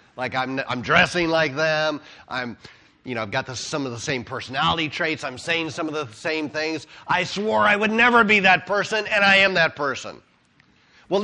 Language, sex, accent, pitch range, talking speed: English, male, American, 130-185 Hz, 210 wpm